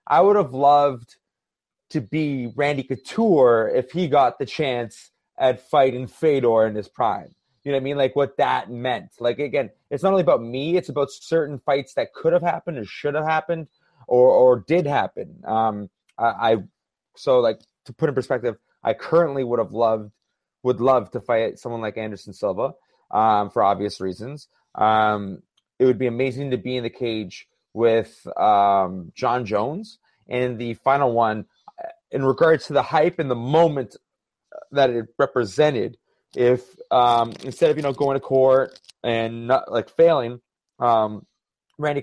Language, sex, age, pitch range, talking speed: English, male, 30-49, 115-155 Hz, 175 wpm